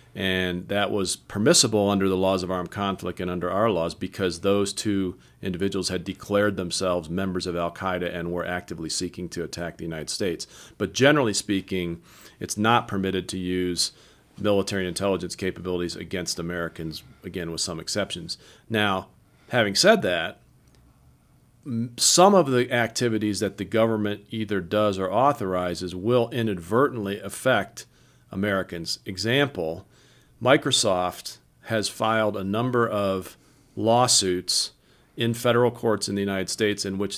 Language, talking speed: English, 140 wpm